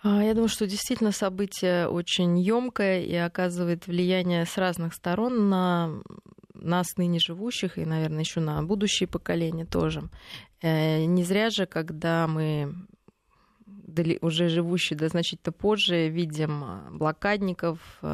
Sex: female